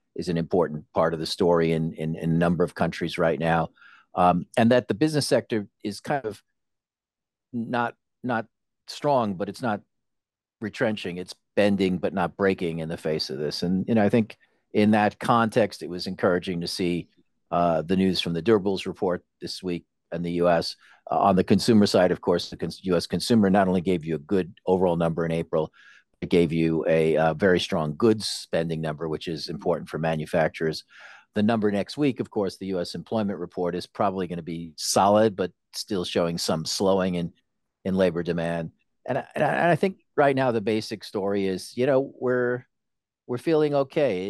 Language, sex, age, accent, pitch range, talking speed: English, male, 50-69, American, 85-110 Hz, 195 wpm